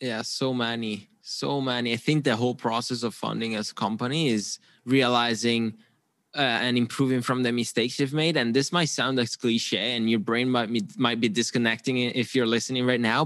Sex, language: male, English